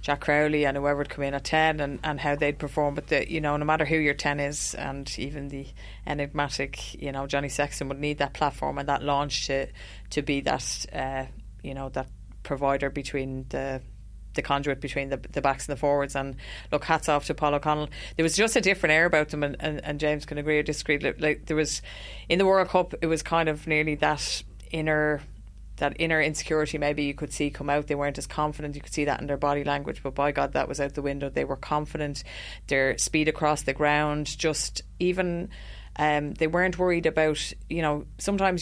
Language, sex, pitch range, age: English, female, 135-150 Hz, 30-49